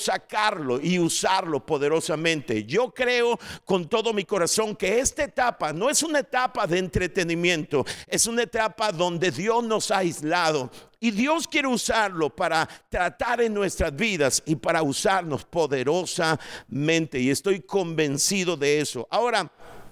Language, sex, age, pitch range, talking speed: Spanish, male, 50-69, 170-230 Hz, 140 wpm